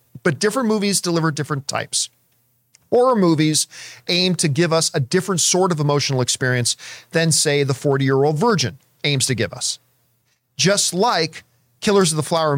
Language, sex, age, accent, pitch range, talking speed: English, male, 40-59, American, 130-185 Hz, 165 wpm